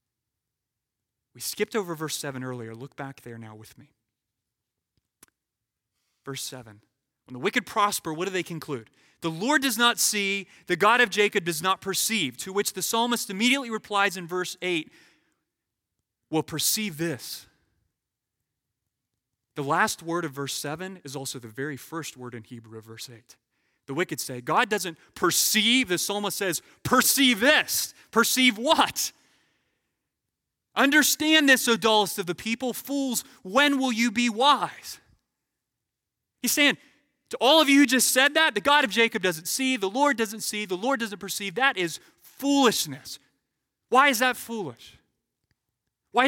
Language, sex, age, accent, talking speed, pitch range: English, male, 30-49, American, 155 wpm, 155-245 Hz